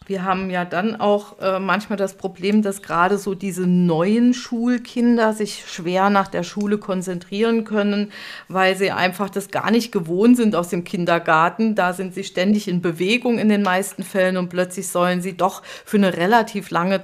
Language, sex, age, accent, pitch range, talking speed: German, female, 40-59, German, 190-230 Hz, 185 wpm